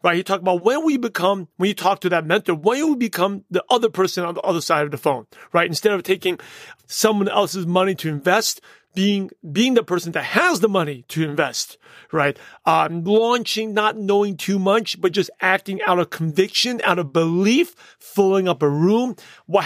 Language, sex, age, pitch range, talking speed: English, male, 30-49, 175-215 Hz, 200 wpm